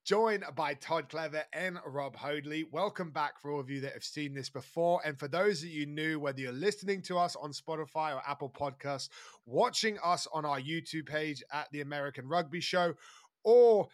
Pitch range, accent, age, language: 140-170 Hz, British, 20-39, English